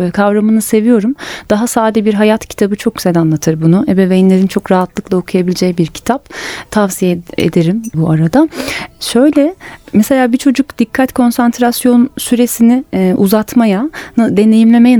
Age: 30-49